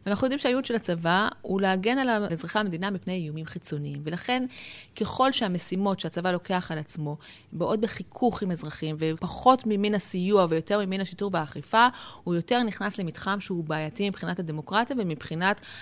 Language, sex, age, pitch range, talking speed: Hebrew, female, 30-49, 170-235 Hz, 150 wpm